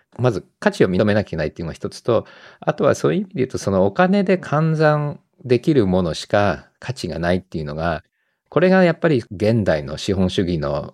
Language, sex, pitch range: Japanese, male, 90-130 Hz